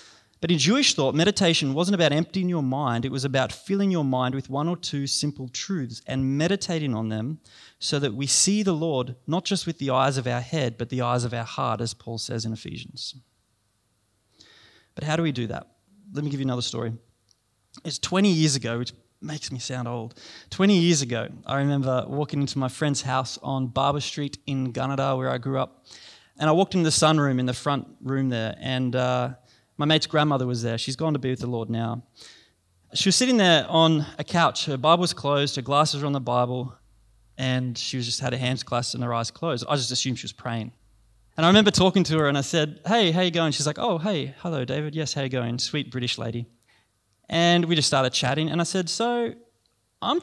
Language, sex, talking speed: English, male, 225 wpm